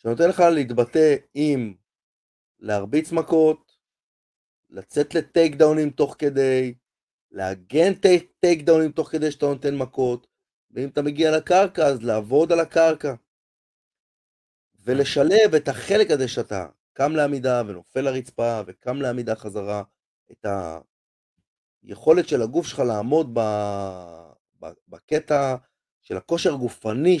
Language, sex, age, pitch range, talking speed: Hebrew, male, 30-49, 115-160 Hz, 110 wpm